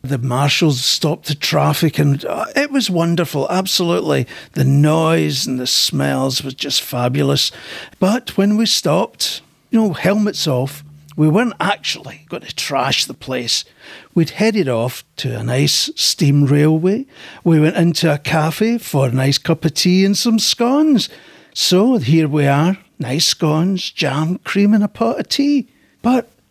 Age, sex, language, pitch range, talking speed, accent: 60-79, male, English, 140-195 Hz, 160 wpm, British